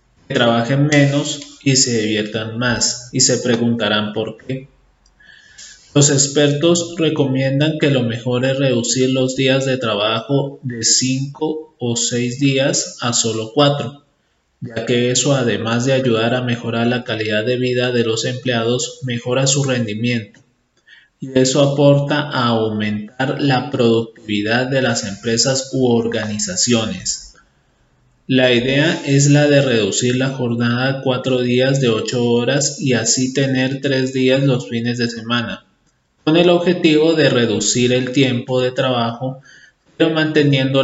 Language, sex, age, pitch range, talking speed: Spanish, male, 30-49, 120-140 Hz, 140 wpm